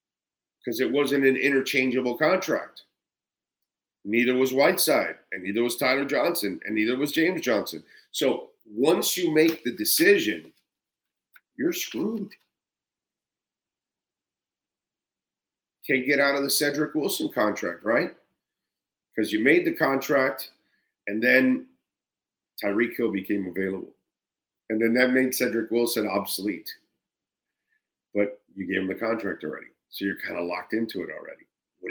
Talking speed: 130 wpm